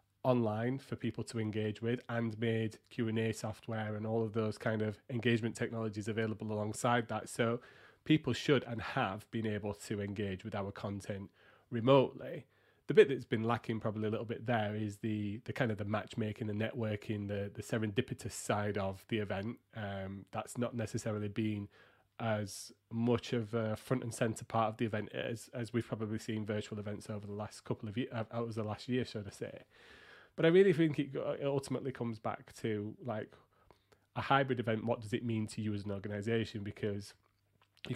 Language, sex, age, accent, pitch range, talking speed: English, male, 30-49, British, 105-120 Hz, 190 wpm